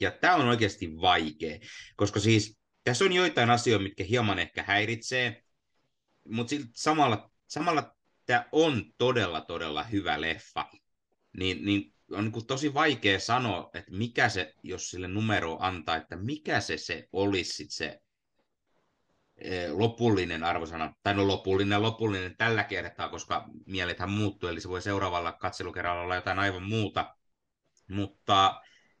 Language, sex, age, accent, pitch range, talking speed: Finnish, male, 30-49, native, 90-110 Hz, 135 wpm